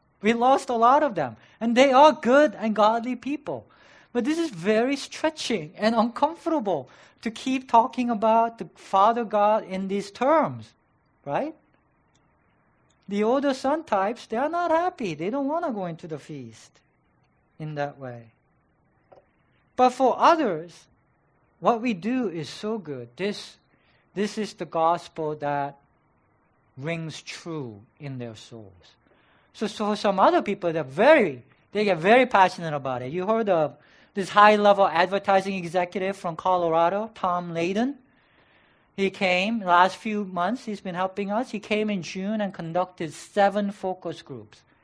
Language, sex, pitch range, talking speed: English, male, 170-240 Hz, 150 wpm